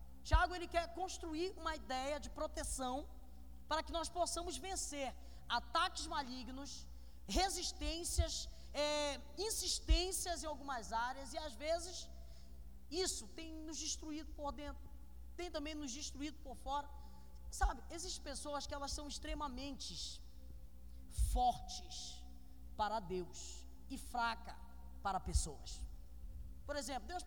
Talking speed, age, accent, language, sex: 115 wpm, 20-39, Brazilian, Portuguese, female